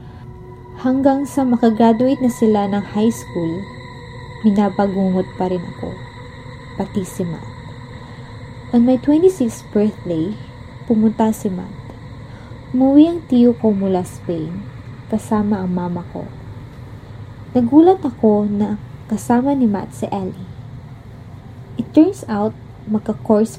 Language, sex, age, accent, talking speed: Filipino, female, 20-39, native, 110 wpm